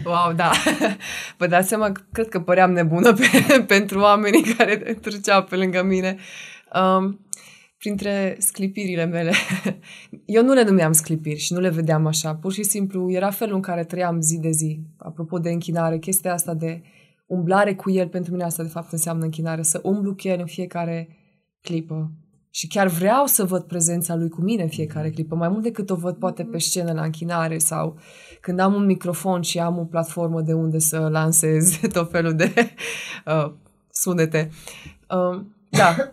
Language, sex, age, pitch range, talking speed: Romanian, female, 20-39, 165-200 Hz, 175 wpm